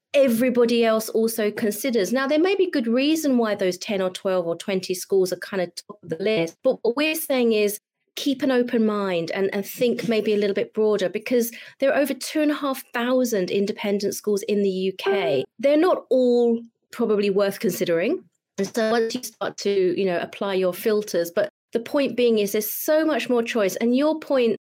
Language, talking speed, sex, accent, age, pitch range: English, 210 wpm, female, British, 30-49, 200-250 Hz